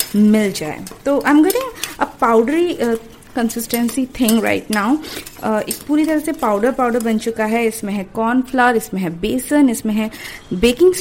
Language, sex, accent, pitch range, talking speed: Hindi, female, native, 215-270 Hz, 165 wpm